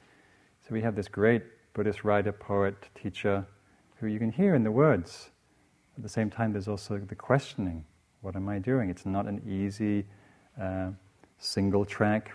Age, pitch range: 40-59, 95-115 Hz